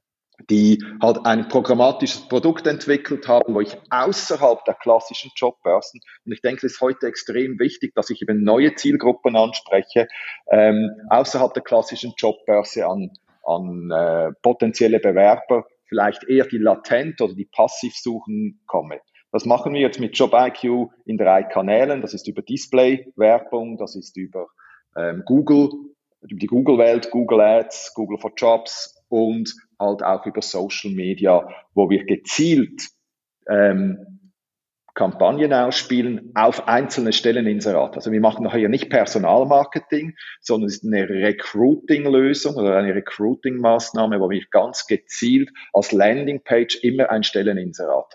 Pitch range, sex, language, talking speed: 105-135 Hz, male, German, 140 wpm